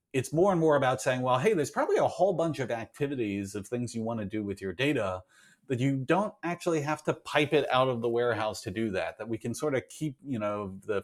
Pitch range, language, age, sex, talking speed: 100-140 Hz, English, 40-59, male, 260 wpm